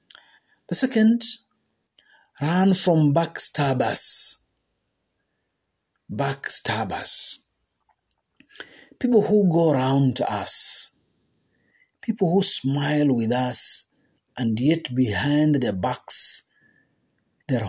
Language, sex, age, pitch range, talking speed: Swahili, male, 50-69, 115-140 Hz, 85 wpm